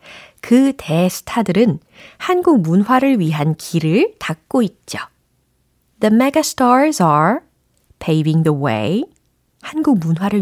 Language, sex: Korean, female